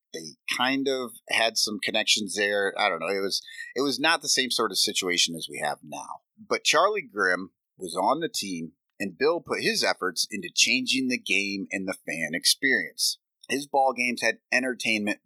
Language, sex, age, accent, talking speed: English, male, 30-49, American, 195 wpm